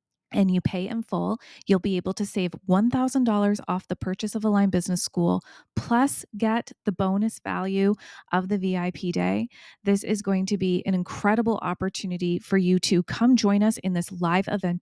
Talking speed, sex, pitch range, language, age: 180 wpm, female, 185-220 Hz, English, 20-39